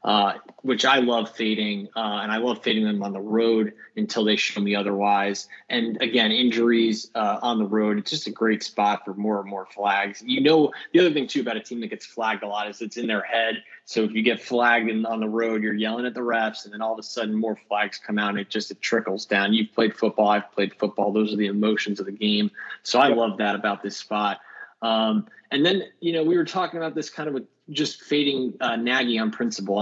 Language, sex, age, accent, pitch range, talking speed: English, male, 20-39, American, 105-120 Hz, 245 wpm